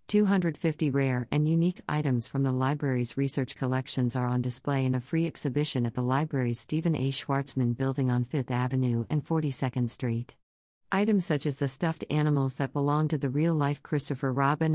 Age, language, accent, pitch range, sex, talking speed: 50-69, English, American, 130-155 Hz, female, 175 wpm